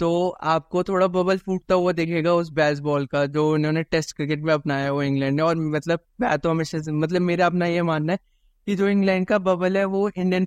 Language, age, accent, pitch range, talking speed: Hindi, 20-39, native, 160-185 Hz, 220 wpm